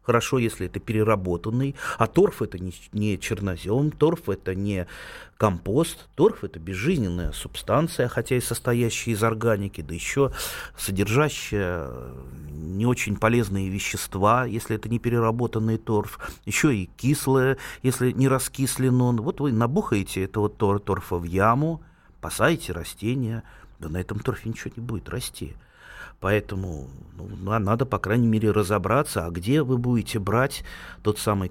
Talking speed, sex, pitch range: 135 wpm, male, 95-125 Hz